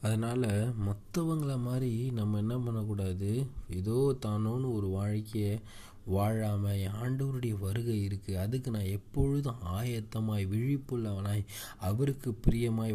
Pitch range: 100-120 Hz